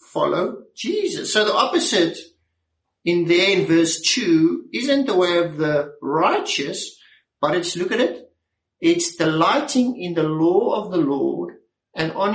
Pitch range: 170-270 Hz